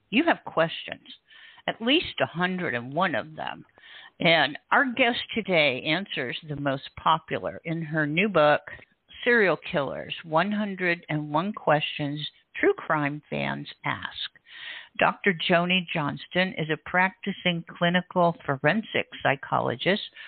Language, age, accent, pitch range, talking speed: English, 50-69, American, 145-190 Hz, 110 wpm